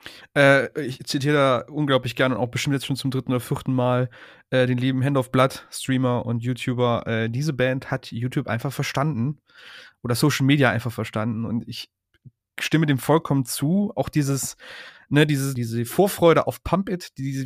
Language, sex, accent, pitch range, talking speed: German, male, German, 130-155 Hz, 180 wpm